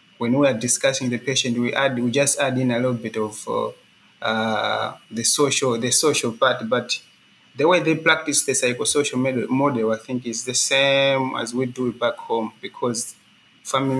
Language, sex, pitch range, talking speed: English, male, 120-145 Hz, 190 wpm